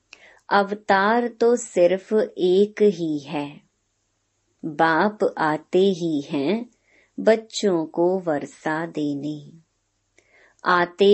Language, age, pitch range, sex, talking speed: Hindi, 30-49, 160-200 Hz, male, 80 wpm